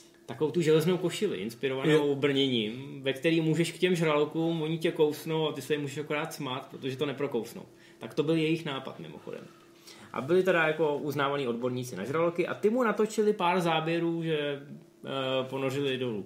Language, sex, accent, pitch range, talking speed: Czech, male, native, 125-170 Hz, 180 wpm